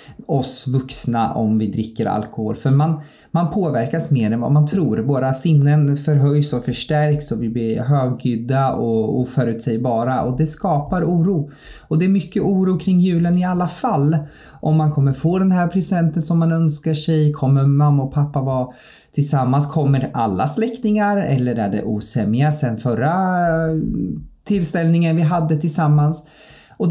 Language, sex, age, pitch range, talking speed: Swedish, male, 30-49, 125-175 Hz, 160 wpm